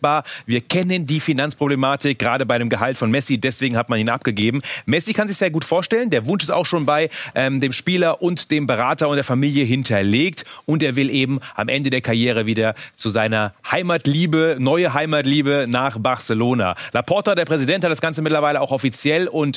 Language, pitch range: German, 125-160 Hz